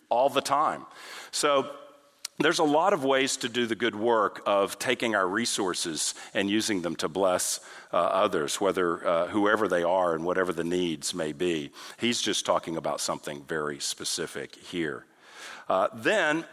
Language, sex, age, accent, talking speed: English, male, 50-69, American, 165 wpm